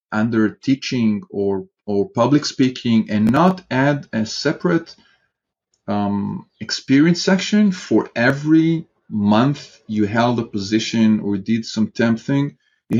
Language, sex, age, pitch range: English, male, 40-59, 110-160 Hz